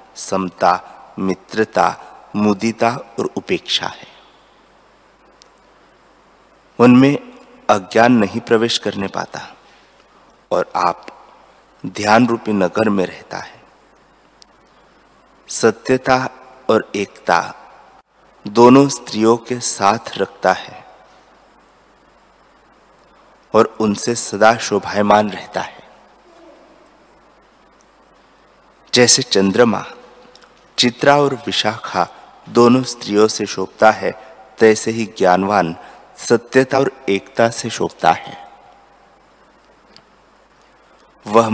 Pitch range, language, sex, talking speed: 100-120 Hz, Hindi, male, 80 wpm